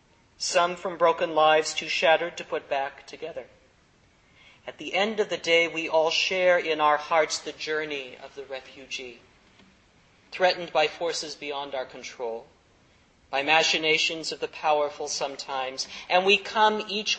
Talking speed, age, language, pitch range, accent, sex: 150 wpm, 40-59, English, 140-175 Hz, American, male